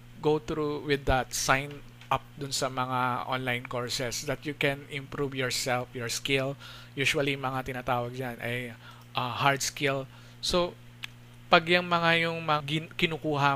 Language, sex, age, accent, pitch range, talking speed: Filipino, male, 20-39, native, 120-145 Hz, 140 wpm